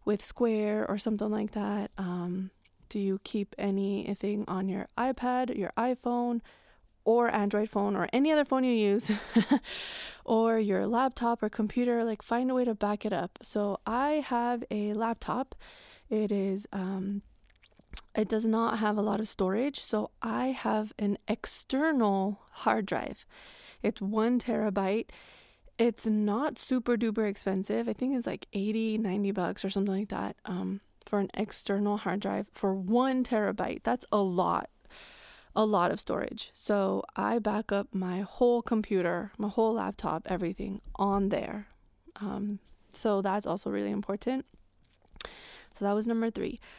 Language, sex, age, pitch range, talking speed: English, female, 20-39, 200-235 Hz, 155 wpm